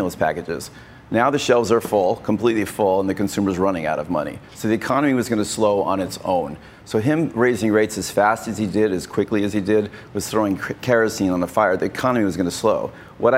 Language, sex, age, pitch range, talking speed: English, male, 40-59, 95-110 Hz, 235 wpm